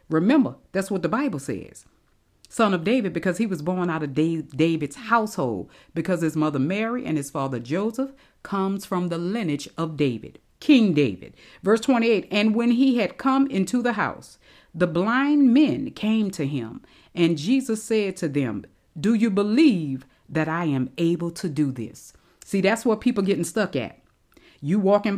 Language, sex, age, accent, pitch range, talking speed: English, female, 40-59, American, 150-215 Hz, 175 wpm